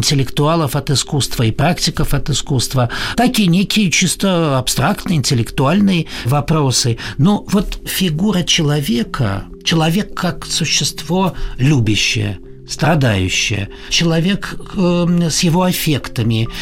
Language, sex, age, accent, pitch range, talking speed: Russian, male, 60-79, native, 130-180 Hz, 100 wpm